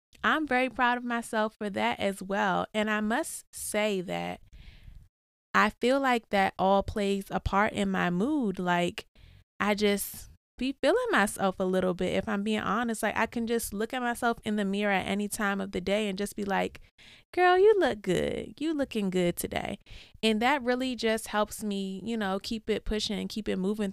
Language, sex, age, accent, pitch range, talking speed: English, female, 20-39, American, 180-220 Hz, 205 wpm